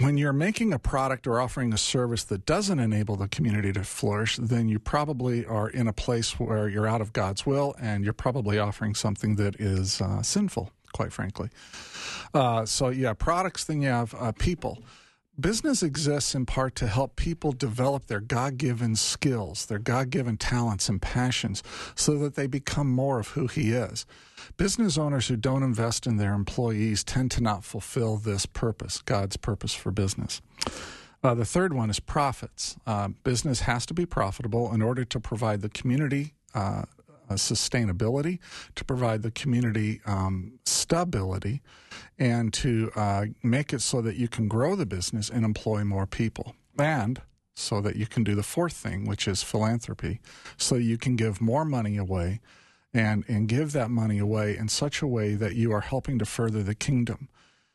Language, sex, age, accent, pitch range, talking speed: English, male, 50-69, American, 105-135 Hz, 180 wpm